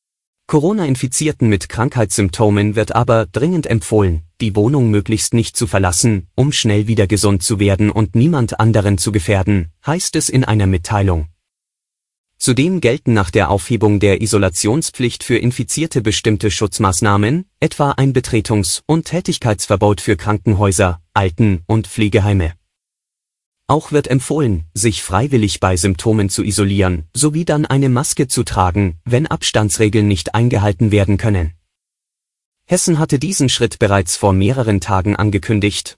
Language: German